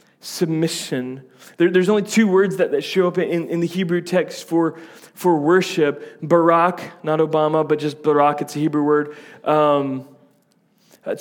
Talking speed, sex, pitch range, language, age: 160 wpm, male, 165-195 Hz, English, 30-49